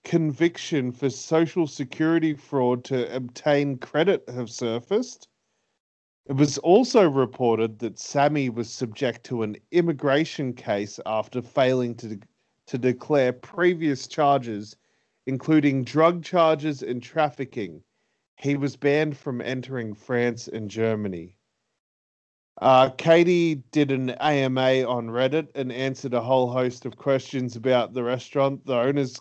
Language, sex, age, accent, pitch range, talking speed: English, male, 30-49, Australian, 120-145 Hz, 125 wpm